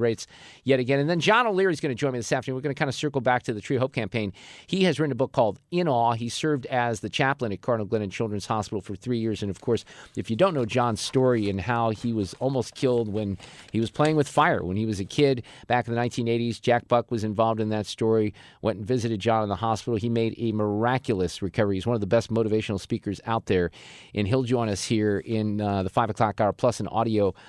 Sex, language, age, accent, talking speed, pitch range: male, English, 40-59, American, 260 wpm, 105-135 Hz